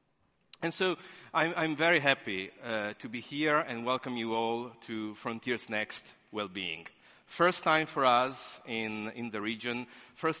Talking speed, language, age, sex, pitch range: 160 wpm, English, 40-59, male, 115-155 Hz